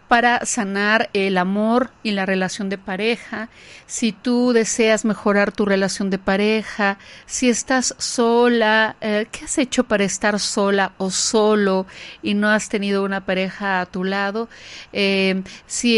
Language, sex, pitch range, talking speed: Spanish, female, 200-235 Hz, 150 wpm